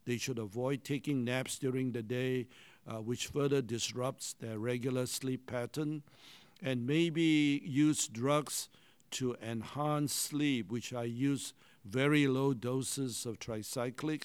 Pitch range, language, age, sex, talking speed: 120-140 Hz, English, 60-79, male, 130 wpm